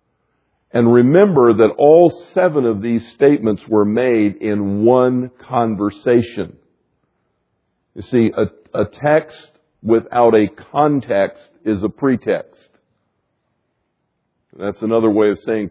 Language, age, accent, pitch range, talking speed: English, 50-69, American, 115-185 Hz, 110 wpm